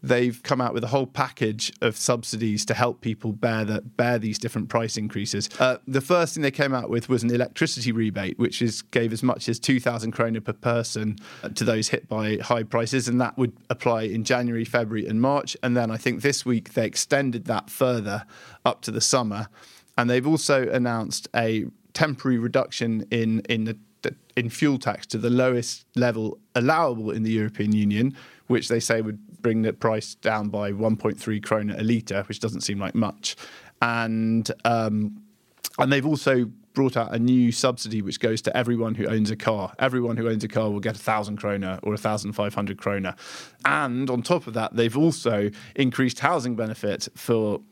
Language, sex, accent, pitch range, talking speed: English, male, British, 105-125 Hz, 190 wpm